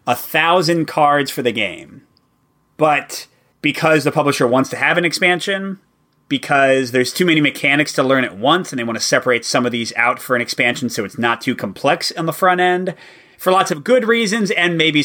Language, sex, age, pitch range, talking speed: English, male, 30-49, 125-175 Hz, 205 wpm